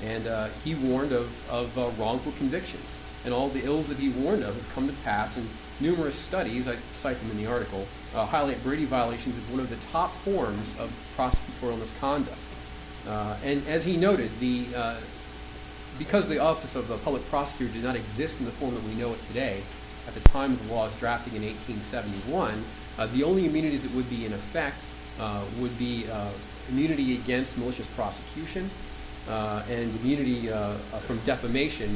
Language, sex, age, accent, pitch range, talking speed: English, male, 40-59, American, 105-135 Hz, 190 wpm